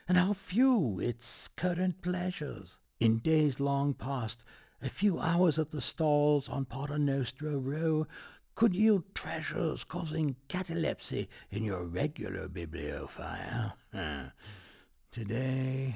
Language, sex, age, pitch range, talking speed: English, male, 60-79, 95-150 Hz, 115 wpm